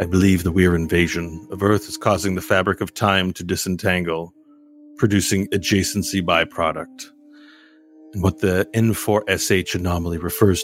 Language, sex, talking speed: English, male, 135 wpm